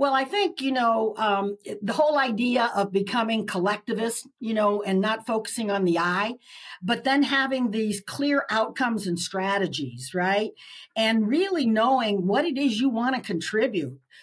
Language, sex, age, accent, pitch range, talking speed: English, female, 50-69, American, 200-250 Hz, 165 wpm